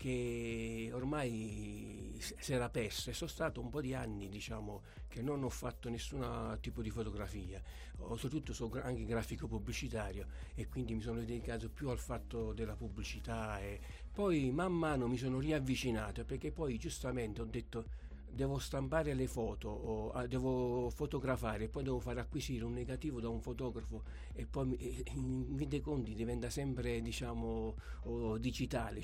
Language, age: Italian, 60-79